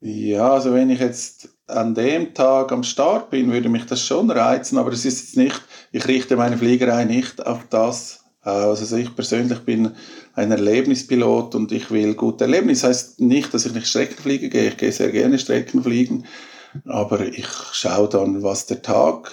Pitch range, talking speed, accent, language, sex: 110-135 Hz, 185 wpm, Austrian, German, male